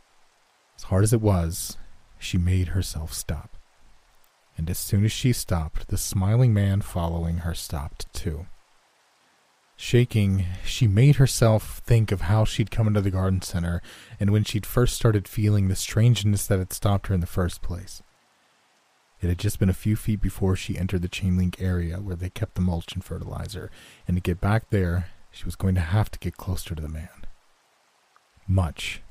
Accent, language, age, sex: American, English, 30-49, male